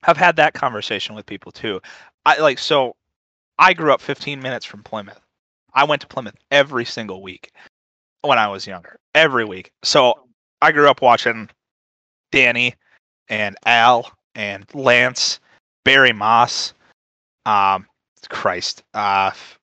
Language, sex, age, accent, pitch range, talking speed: English, male, 30-49, American, 105-145 Hz, 140 wpm